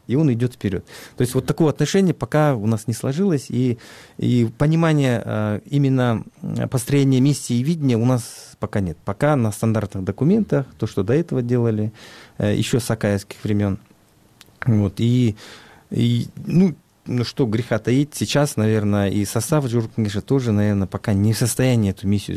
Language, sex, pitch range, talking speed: Russian, male, 105-135 Hz, 165 wpm